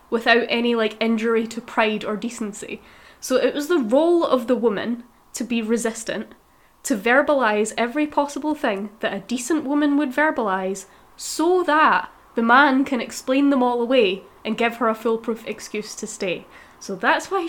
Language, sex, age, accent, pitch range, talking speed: English, female, 10-29, British, 210-285 Hz, 170 wpm